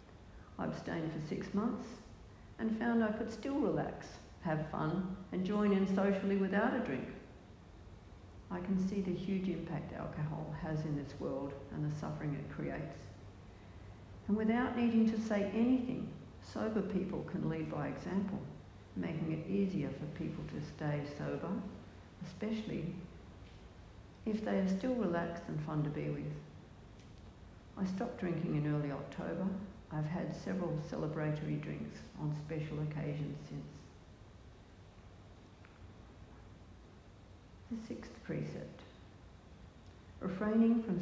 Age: 60-79